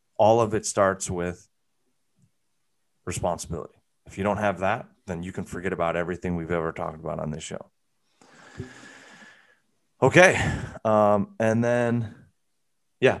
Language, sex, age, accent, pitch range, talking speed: English, male, 30-49, American, 90-115 Hz, 130 wpm